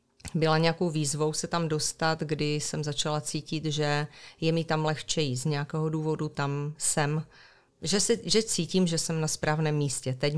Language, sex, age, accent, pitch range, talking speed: Czech, female, 40-59, native, 145-160 Hz, 175 wpm